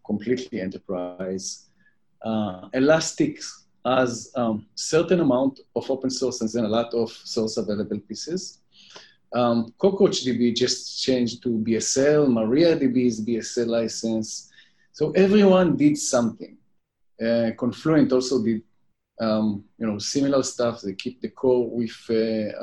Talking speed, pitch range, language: 130 wpm, 115-150 Hz, English